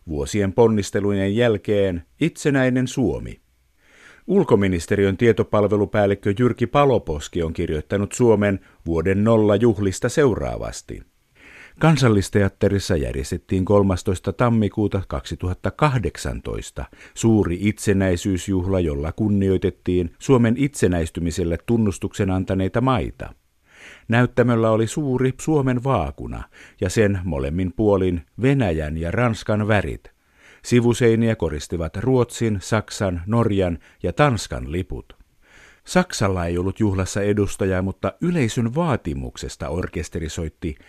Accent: native